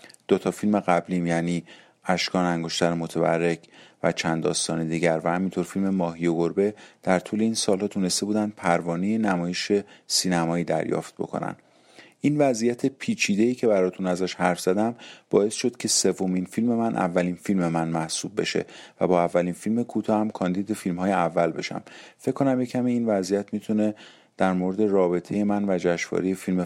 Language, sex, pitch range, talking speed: Persian, male, 85-100 Hz, 165 wpm